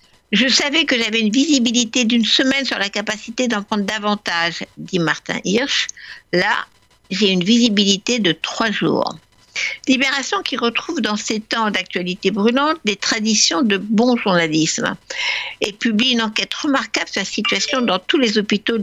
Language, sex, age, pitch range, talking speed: French, female, 60-79, 195-255 Hz, 170 wpm